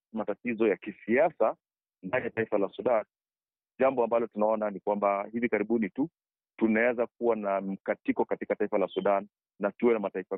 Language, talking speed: Swahili, 160 wpm